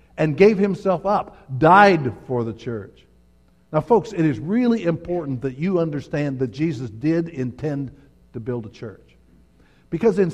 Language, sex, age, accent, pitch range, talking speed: English, male, 60-79, American, 130-170 Hz, 155 wpm